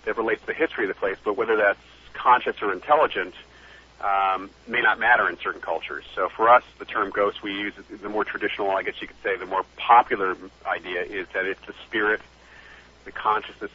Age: 40-59